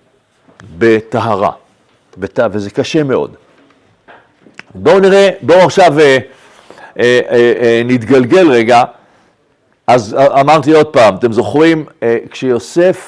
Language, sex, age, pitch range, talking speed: Hebrew, male, 50-69, 120-150 Hz, 110 wpm